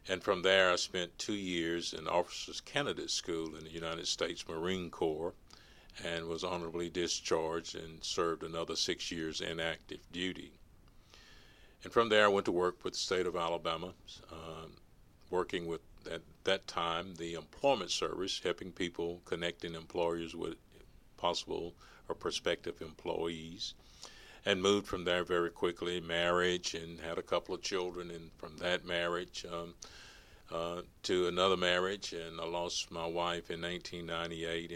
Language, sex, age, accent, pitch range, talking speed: English, male, 50-69, American, 85-90 Hz, 150 wpm